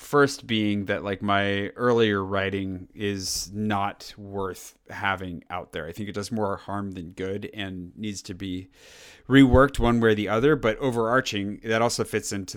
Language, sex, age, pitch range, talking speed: English, male, 30-49, 95-110 Hz, 175 wpm